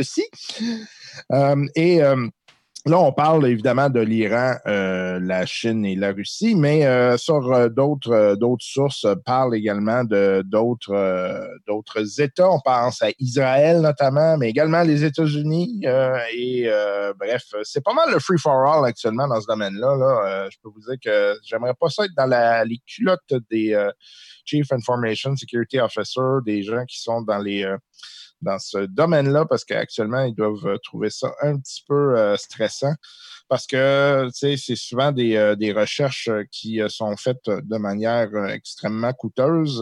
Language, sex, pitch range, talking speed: French, male, 110-140 Hz, 170 wpm